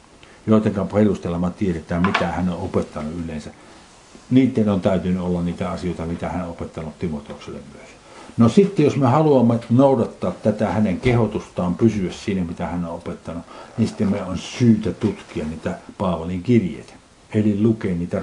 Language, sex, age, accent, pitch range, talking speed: Finnish, male, 60-79, native, 85-115 Hz, 155 wpm